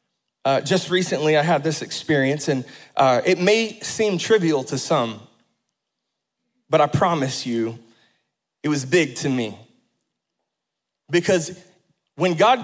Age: 30-49